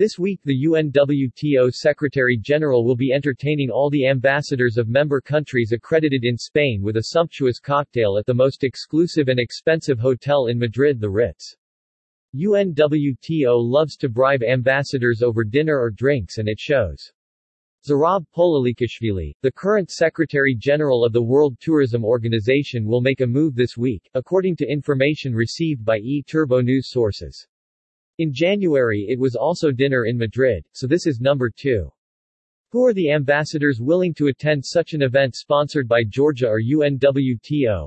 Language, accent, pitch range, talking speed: English, American, 120-150 Hz, 155 wpm